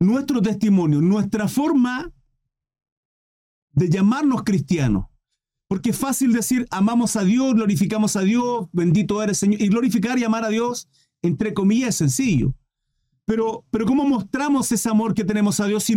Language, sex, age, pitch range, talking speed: Spanish, male, 40-59, 160-230 Hz, 155 wpm